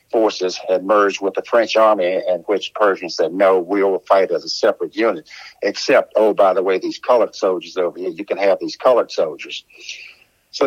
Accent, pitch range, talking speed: American, 110-155 Hz, 195 wpm